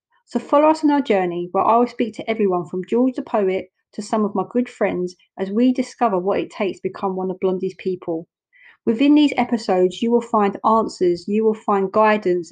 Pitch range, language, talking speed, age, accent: 190-235 Hz, English, 215 wpm, 30-49, British